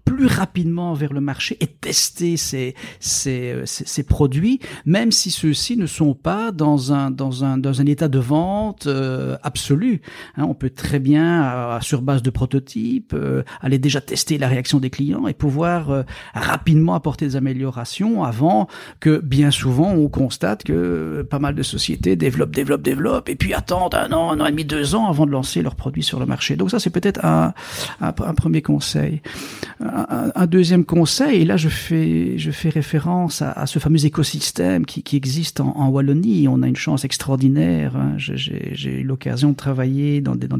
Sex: male